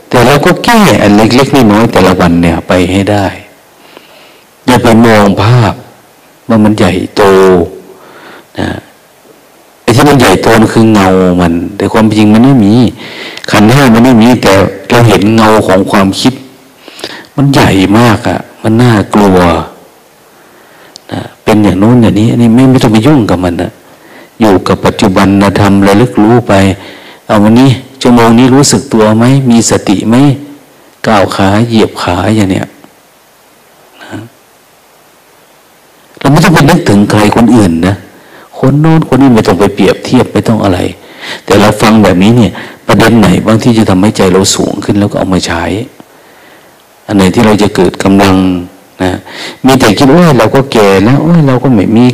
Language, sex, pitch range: Thai, male, 100-130 Hz